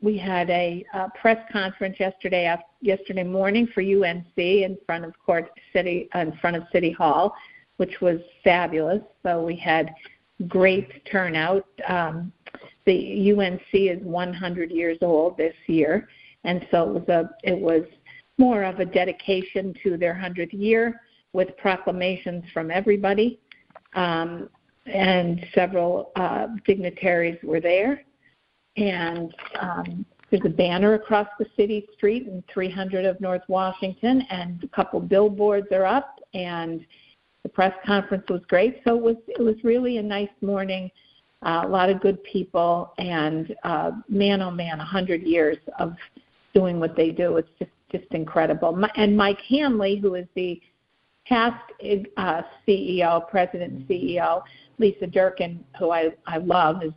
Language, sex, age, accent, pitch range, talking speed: English, female, 50-69, American, 175-205 Hz, 140 wpm